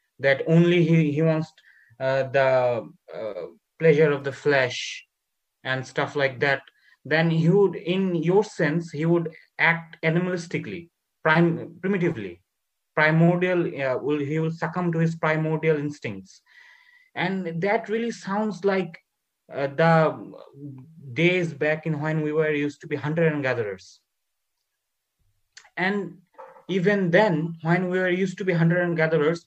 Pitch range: 150-175 Hz